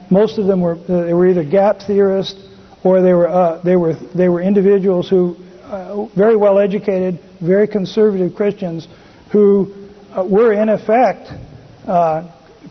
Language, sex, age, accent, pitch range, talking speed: Filipino, male, 50-69, American, 165-200 Hz, 150 wpm